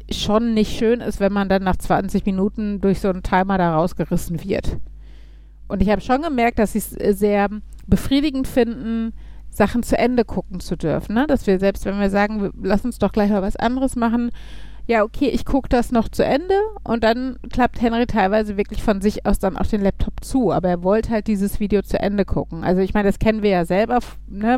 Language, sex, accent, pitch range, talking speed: German, female, German, 185-225 Hz, 210 wpm